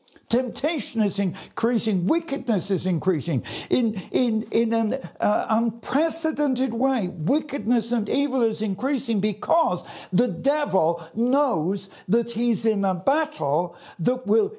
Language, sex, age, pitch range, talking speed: English, male, 60-79, 145-240 Hz, 120 wpm